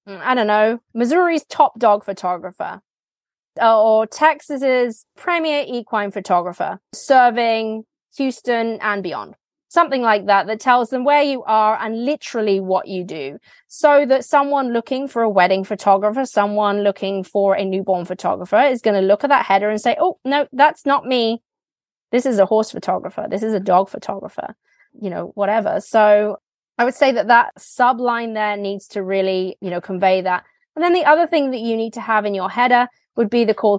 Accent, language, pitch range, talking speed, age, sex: British, English, 200-260 Hz, 185 wpm, 20-39, female